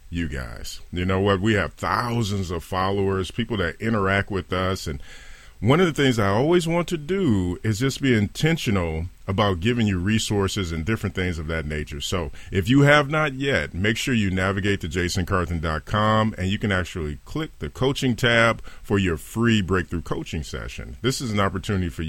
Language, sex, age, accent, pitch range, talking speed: English, male, 40-59, American, 80-110 Hz, 190 wpm